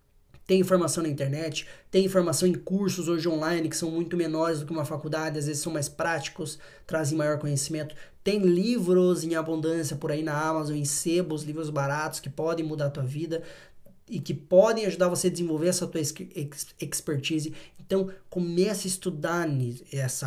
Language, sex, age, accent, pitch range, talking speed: Portuguese, male, 20-39, Brazilian, 150-180 Hz, 175 wpm